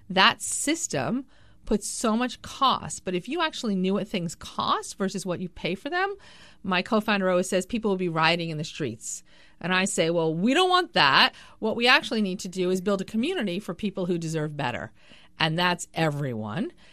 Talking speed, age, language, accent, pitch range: 200 wpm, 40-59, English, American, 175-230 Hz